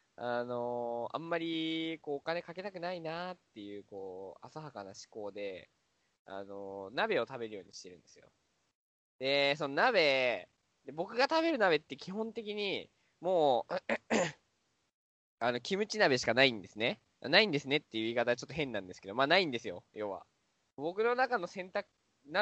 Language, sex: Japanese, male